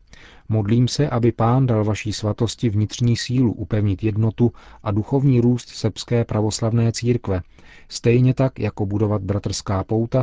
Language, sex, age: Czech, male, 40-59